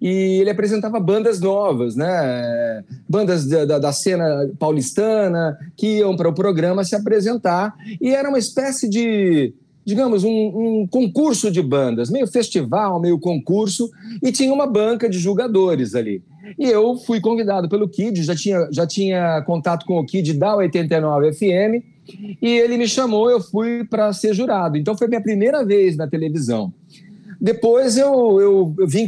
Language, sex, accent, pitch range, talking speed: Portuguese, male, Brazilian, 165-220 Hz, 160 wpm